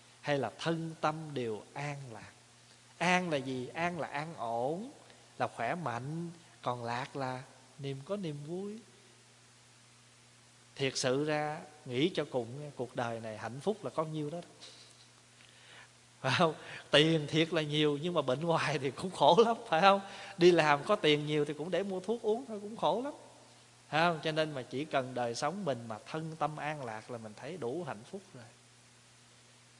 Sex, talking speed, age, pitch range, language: male, 185 wpm, 20-39, 120-160 Hz, Vietnamese